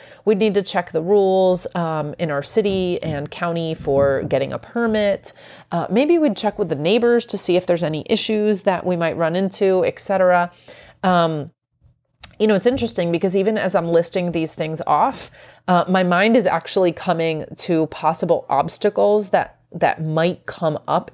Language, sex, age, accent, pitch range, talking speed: English, female, 30-49, American, 155-210 Hz, 180 wpm